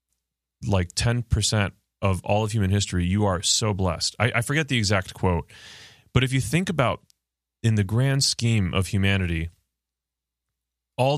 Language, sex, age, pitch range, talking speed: English, male, 30-49, 95-115 Hz, 155 wpm